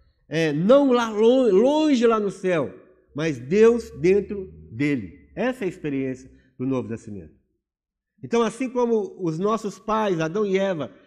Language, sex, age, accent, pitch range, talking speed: Portuguese, male, 50-69, Brazilian, 140-215 Hz, 150 wpm